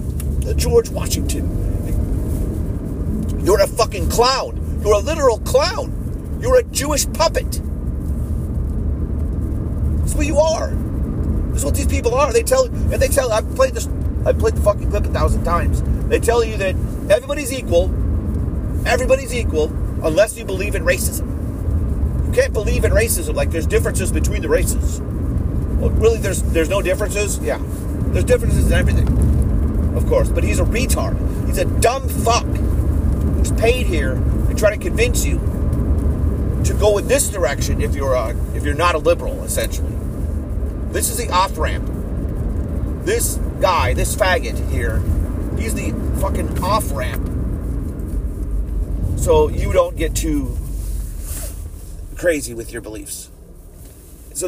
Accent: American